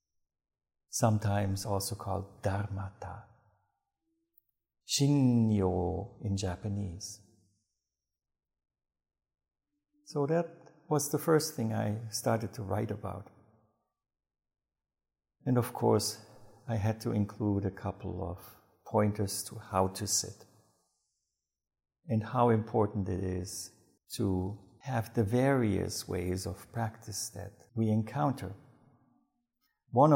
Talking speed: 100 wpm